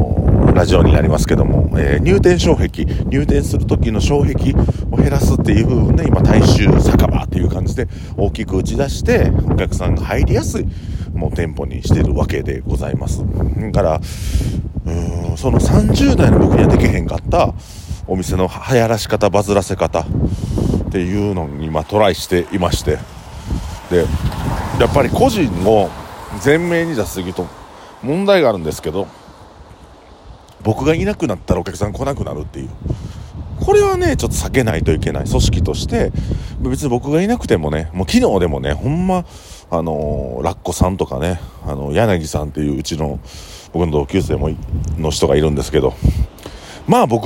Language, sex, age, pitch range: Japanese, male, 40-59, 80-115 Hz